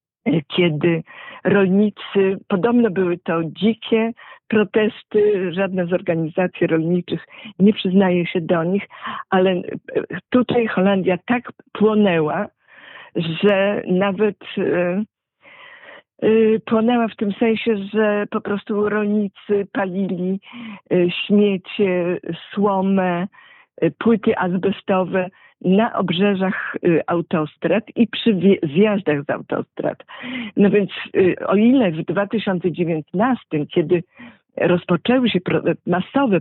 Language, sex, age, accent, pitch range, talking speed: Polish, female, 50-69, native, 180-220 Hz, 90 wpm